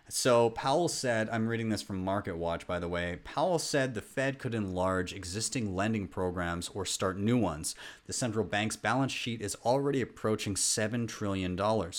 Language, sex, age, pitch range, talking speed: English, male, 30-49, 95-125 Hz, 175 wpm